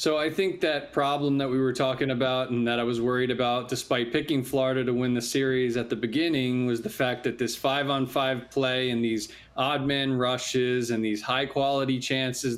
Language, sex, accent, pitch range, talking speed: English, male, American, 120-140 Hz, 215 wpm